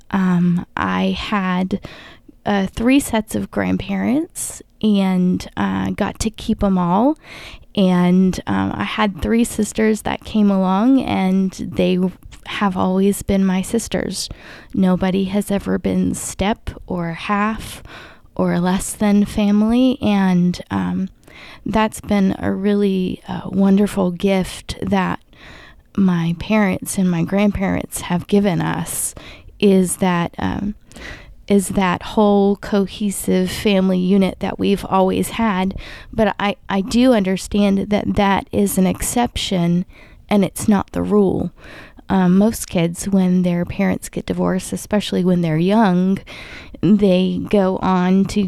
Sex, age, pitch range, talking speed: female, 20-39, 175-205 Hz, 125 wpm